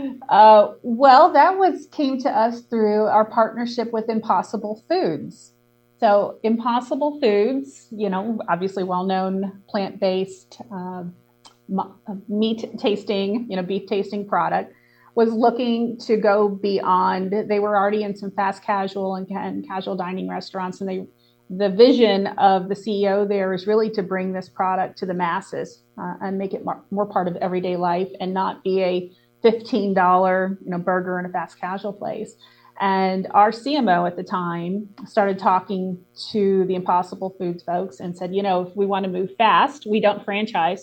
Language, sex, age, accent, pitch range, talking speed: English, female, 30-49, American, 185-215 Hz, 165 wpm